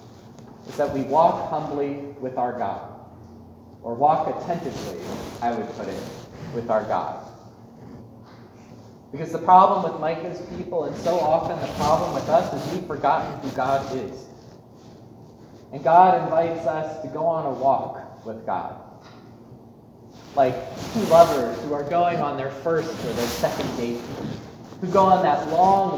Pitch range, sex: 120-170 Hz, male